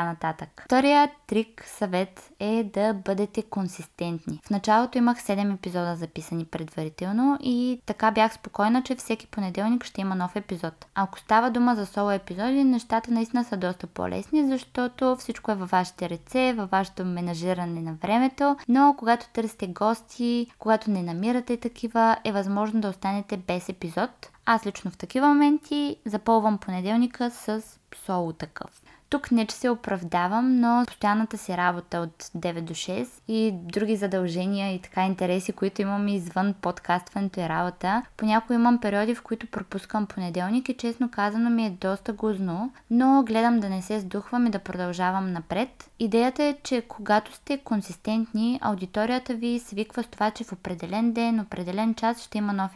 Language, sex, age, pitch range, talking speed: Bulgarian, female, 20-39, 185-235 Hz, 160 wpm